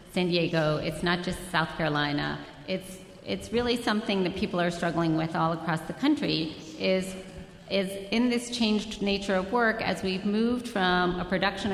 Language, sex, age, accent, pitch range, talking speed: English, female, 40-59, American, 170-210 Hz, 175 wpm